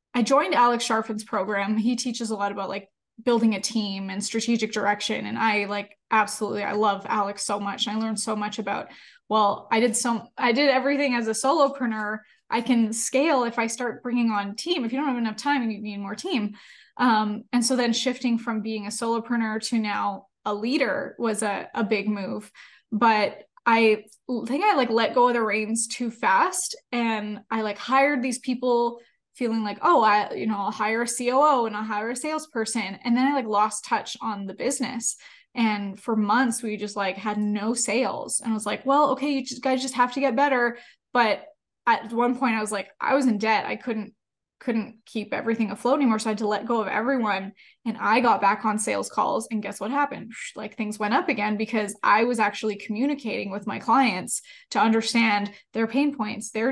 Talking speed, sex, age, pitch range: 210 wpm, female, 20-39, 210-250 Hz